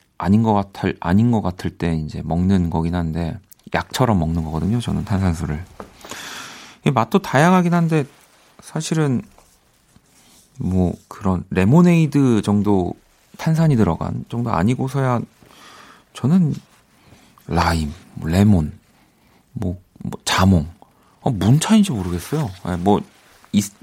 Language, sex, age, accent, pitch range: Korean, male, 40-59, native, 85-125 Hz